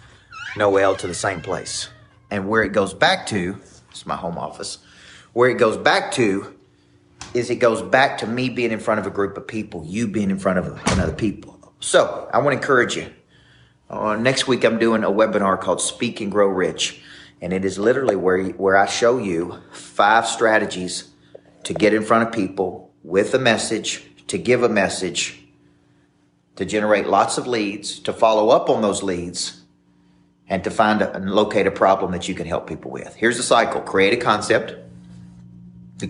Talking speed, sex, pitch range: 190 wpm, male, 80-115 Hz